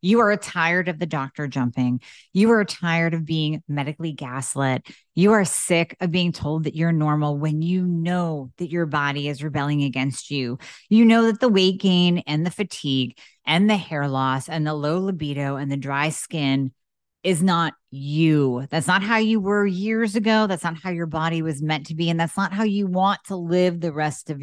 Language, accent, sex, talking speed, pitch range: English, American, female, 205 wpm, 150-190 Hz